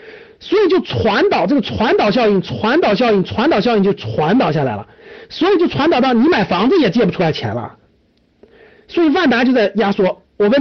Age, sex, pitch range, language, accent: 50-69, male, 195-275 Hz, Chinese, native